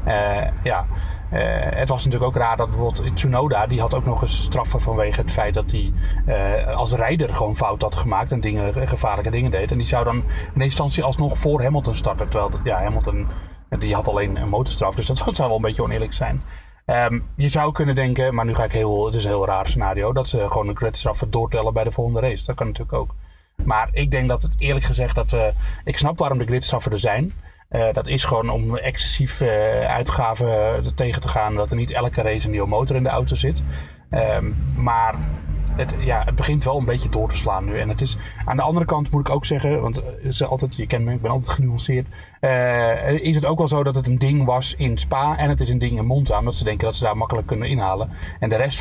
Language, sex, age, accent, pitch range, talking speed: Dutch, male, 30-49, Dutch, 105-130 Hz, 240 wpm